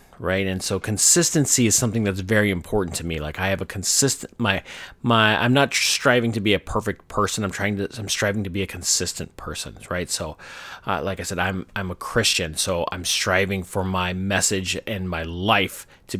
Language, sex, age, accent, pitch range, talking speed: English, male, 30-49, American, 95-115 Hz, 210 wpm